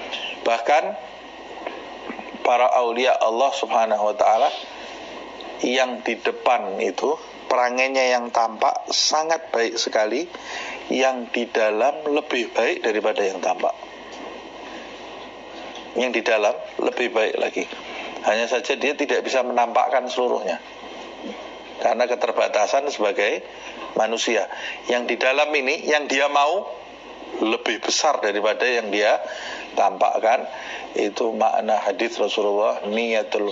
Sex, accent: male, native